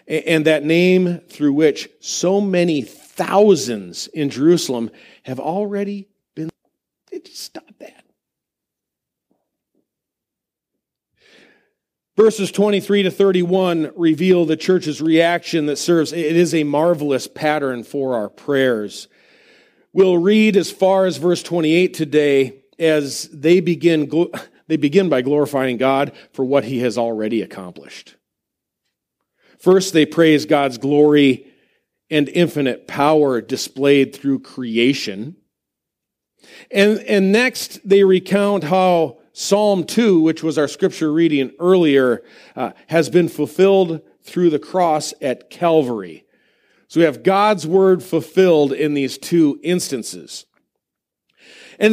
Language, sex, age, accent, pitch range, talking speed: English, male, 40-59, American, 140-185 Hz, 115 wpm